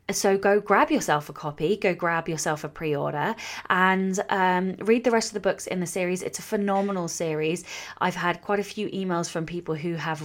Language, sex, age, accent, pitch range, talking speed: English, female, 20-39, British, 165-215 Hz, 210 wpm